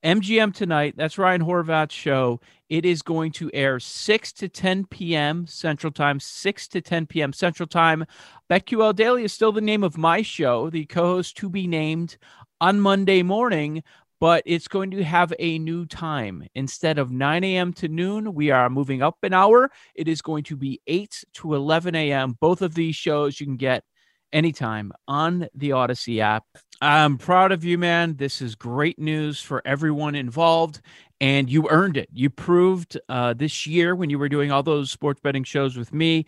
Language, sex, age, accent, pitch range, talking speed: English, male, 40-59, American, 135-170 Hz, 185 wpm